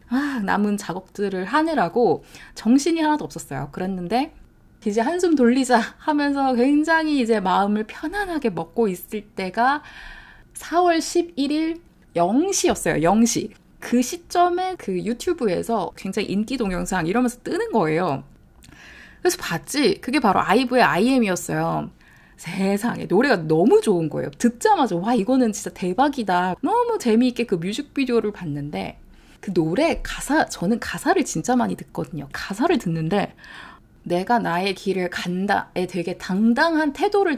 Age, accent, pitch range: 20-39, native, 185-275 Hz